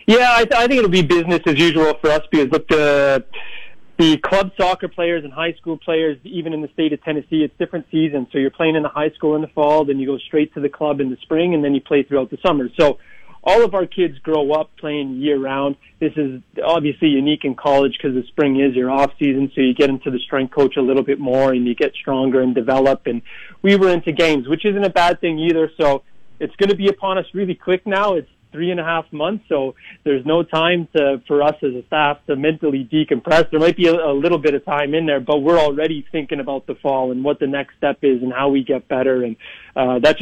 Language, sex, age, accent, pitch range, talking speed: English, male, 30-49, American, 140-165 Hz, 255 wpm